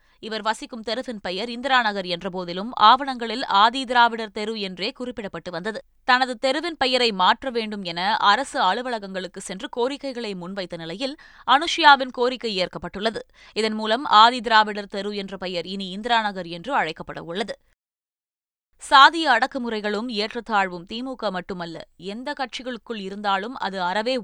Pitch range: 195-245 Hz